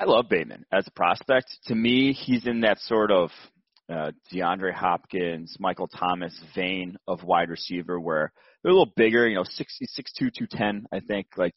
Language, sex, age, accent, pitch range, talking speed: English, male, 30-49, American, 95-115 Hz, 180 wpm